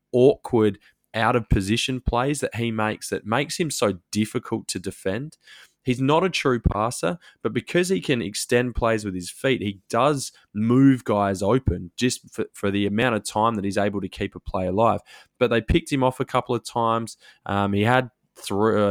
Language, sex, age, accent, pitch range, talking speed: English, male, 20-39, Australian, 100-125 Hz, 195 wpm